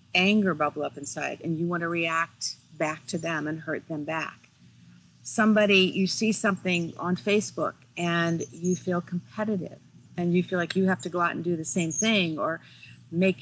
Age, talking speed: 40-59, 190 wpm